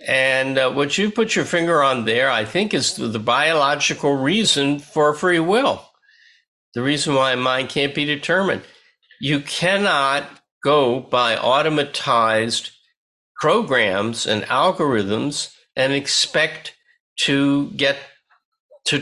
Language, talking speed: English, 120 wpm